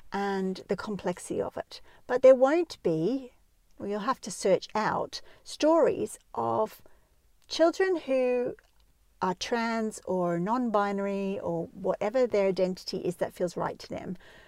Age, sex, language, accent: 50-69, female, English, Australian